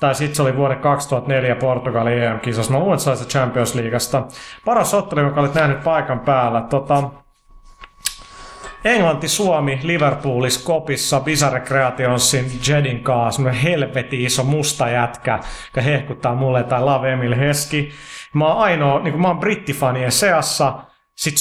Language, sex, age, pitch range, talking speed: Finnish, male, 30-49, 125-150 Hz, 130 wpm